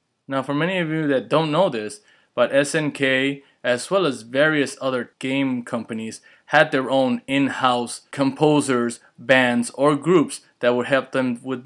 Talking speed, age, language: 160 wpm, 20-39, English